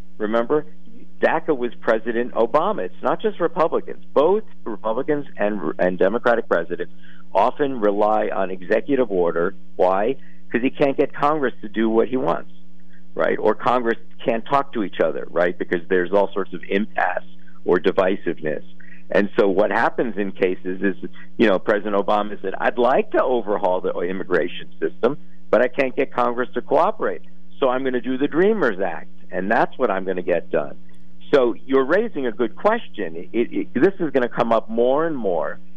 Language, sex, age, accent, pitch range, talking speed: English, male, 50-69, American, 90-130 Hz, 180 wpm